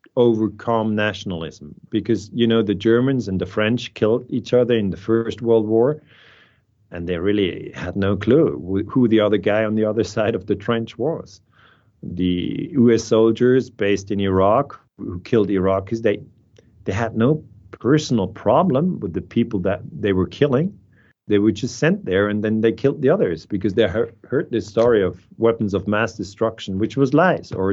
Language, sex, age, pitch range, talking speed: English, male, 40-59, 100-115 Hz, 180 wpm